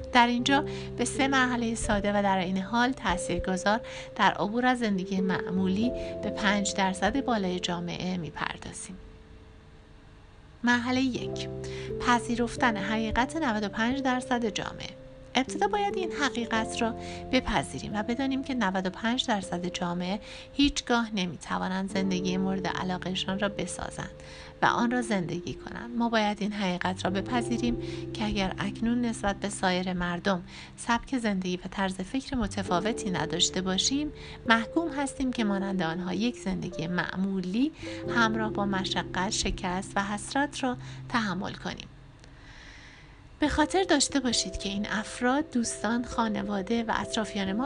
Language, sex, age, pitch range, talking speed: Persian, female, 60-79, 180-245 Hz, 135 wpm